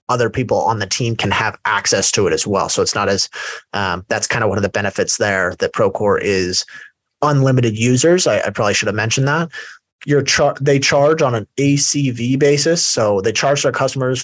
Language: English